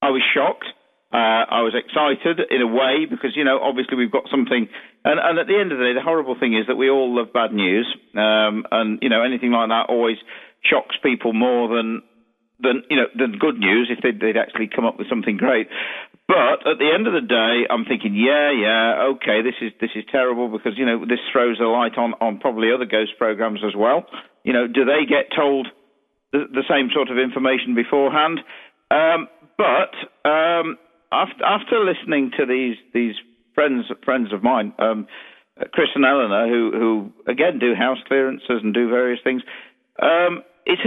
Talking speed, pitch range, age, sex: 200 wpm, 115-140 Hz, 50-69, male